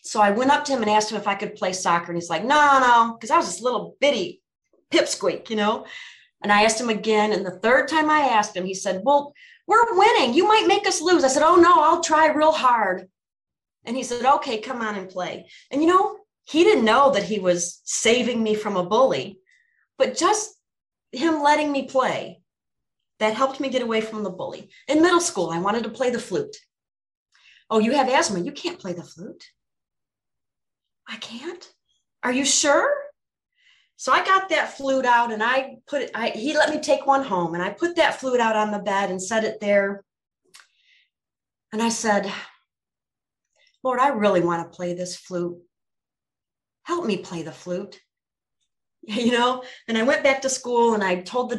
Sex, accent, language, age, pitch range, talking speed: female, American, English, 30-49, 210-300 Hz, 200 wpm